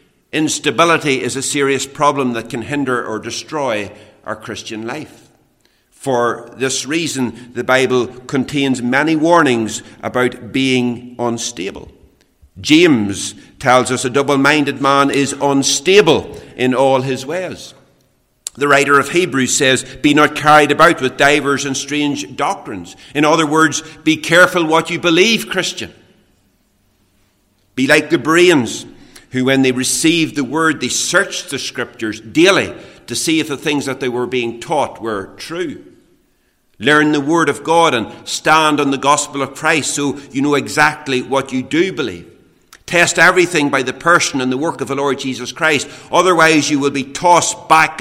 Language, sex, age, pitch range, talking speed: English, male, 50-69, 125-150 Hz, 155 wpm